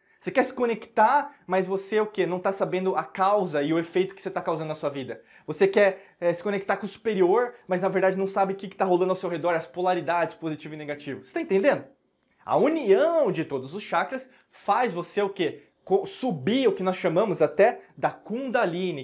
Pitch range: 165-220 Hz